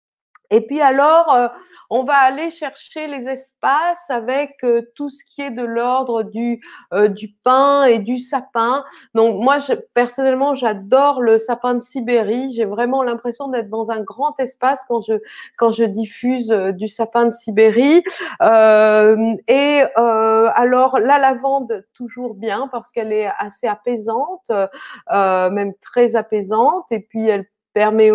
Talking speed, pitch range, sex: 160 wpm, 225-275 Hz, female